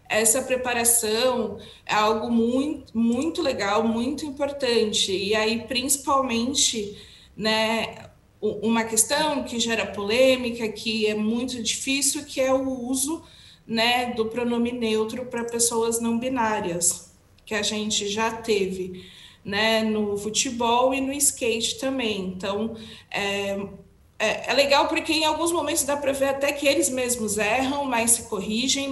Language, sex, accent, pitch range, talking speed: Portuguese, female, Brazilian, 215-260 Hz, 135 wpm